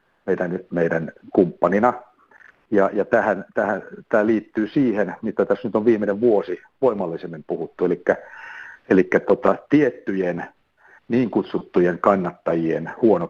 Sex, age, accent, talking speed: male, 60-79, native, 115 wpm